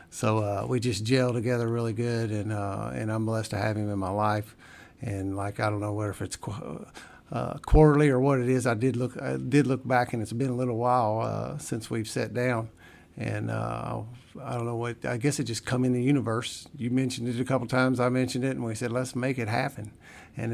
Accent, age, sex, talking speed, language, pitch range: American, 50-69, male, 245 wpm, English, 110-125 Hz